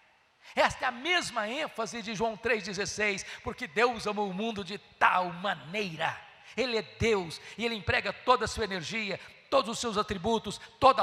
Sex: male